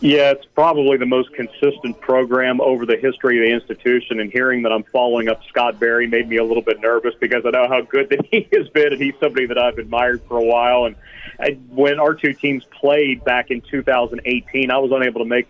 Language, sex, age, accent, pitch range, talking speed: English, male, 40-59, American, 115-130 Hz, 230 wpm